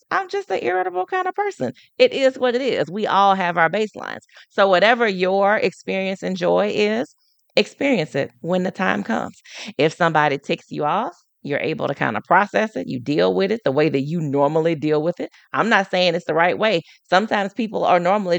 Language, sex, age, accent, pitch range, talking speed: English, female, 30-49, American, 170-225 Hz, 210 wpm